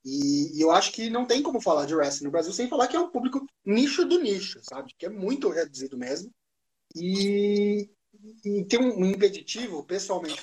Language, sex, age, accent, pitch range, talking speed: Portuguese, male, 20-39, Brazilian, 160-230 Hz, 190 wpm